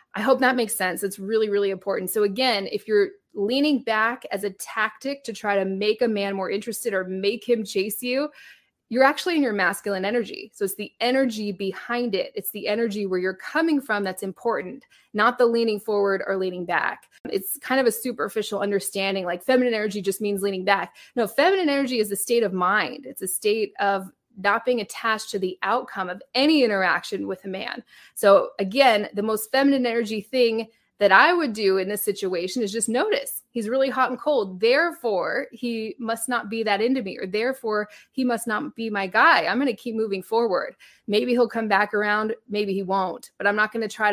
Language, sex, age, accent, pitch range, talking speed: English, female, 20-39, American, 200-250 Hz, 210 wpm